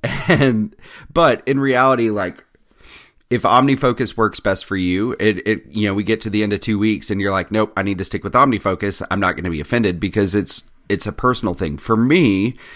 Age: 30-49